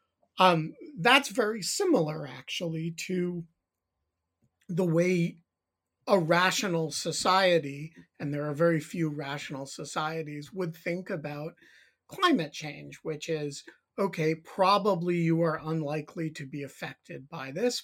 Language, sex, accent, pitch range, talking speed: English, male, American, 150-180 Hz, 120 wpm